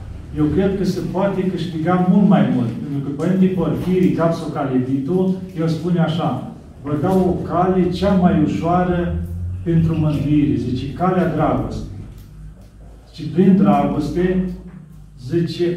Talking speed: 130 wpm